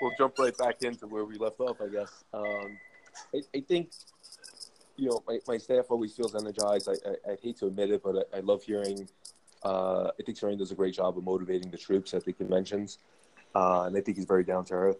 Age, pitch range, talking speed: 20-39, 90-100 Hz, 235 wpm